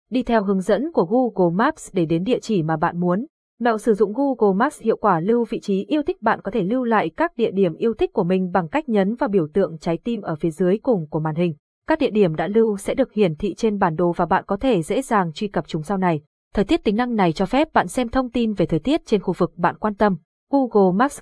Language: Vietnamese